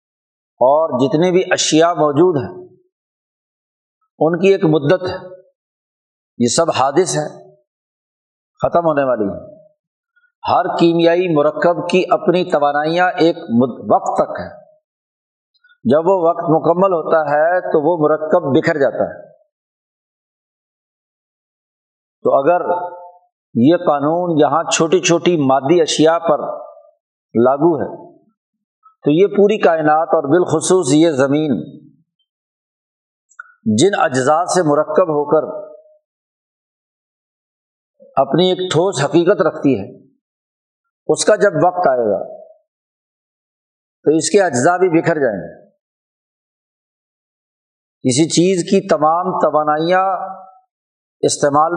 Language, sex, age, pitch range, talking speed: Urdu, male, 50-69, 155-200 Hz, 105 wpm